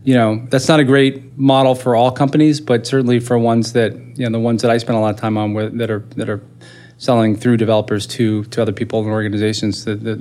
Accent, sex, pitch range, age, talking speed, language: American, male, 115-130 Hz, 30-49, 255 wpm, English